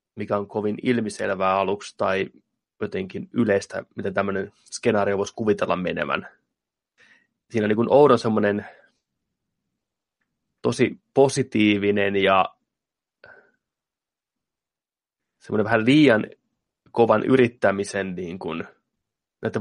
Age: 20-39